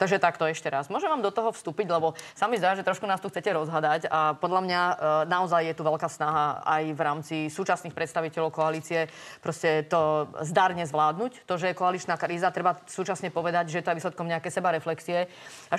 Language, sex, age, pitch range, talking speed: Slovak, female, 30-49, 160-185 Hz, 200 wpm